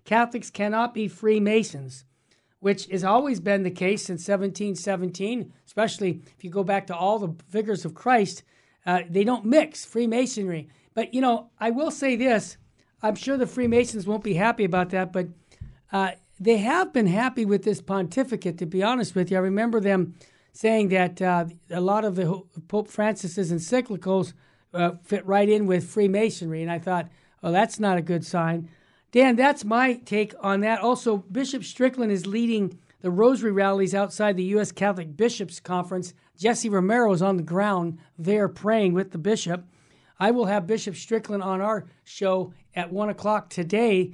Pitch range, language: 180-220 Hz, English